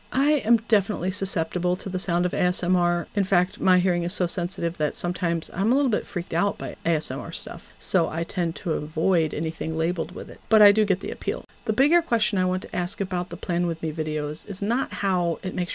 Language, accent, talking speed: English, American, 230 wpm